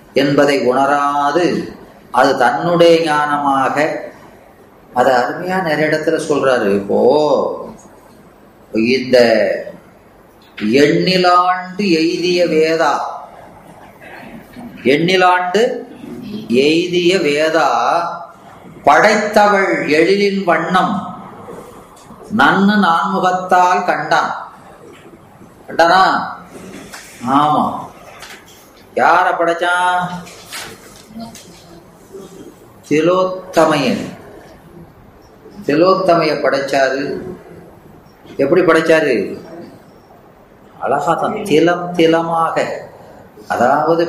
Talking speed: 50 wpm